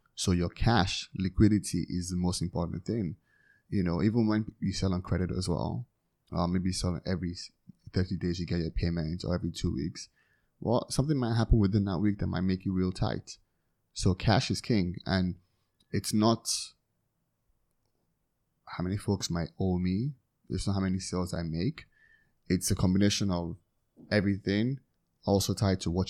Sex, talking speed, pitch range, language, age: male, 170 wpm, 85-100 Hz, English, 20-39